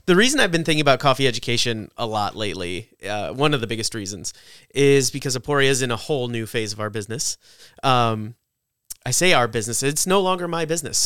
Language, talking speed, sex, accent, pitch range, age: English, 210 wpm, male, American, 110-135 Hz, 30-49